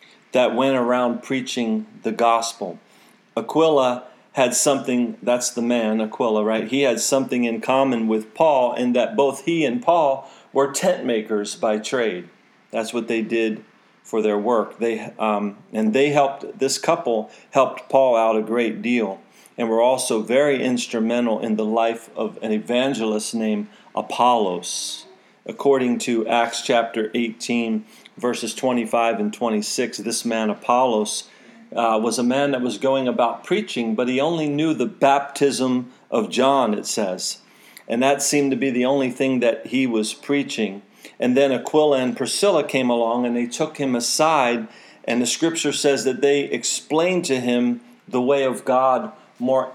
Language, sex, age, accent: English, male, 40-59, American